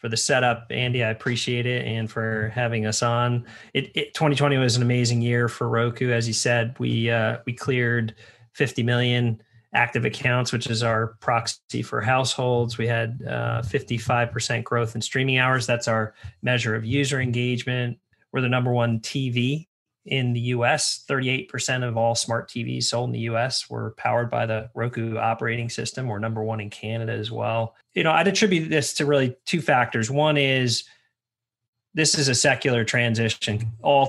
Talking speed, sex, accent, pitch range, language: 175 wpm, male, American, 115-125 Hz, English